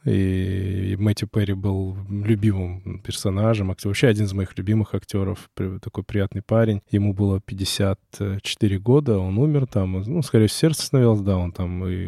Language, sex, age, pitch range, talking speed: Russian, male, 20-39, 100-115 Hz, 150 wpm